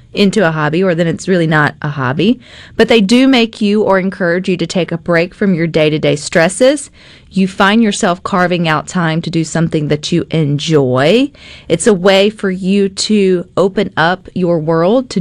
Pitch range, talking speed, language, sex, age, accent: 160-220 Hz, 200 wpm, English, female, 40-59, American